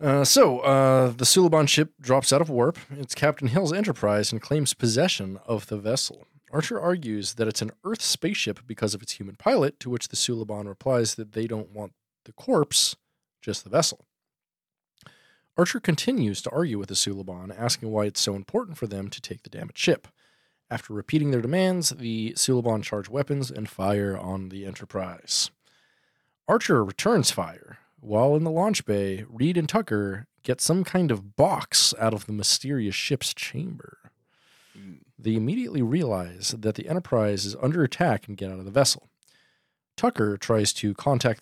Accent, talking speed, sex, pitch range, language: American, 170 wpm, male, 105-150 Hz, English